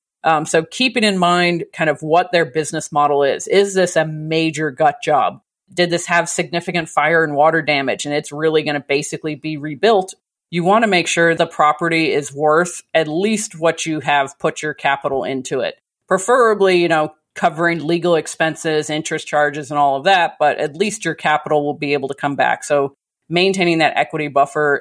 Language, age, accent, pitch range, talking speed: English, 40-59, American, 150-175 Hz, 195 wpm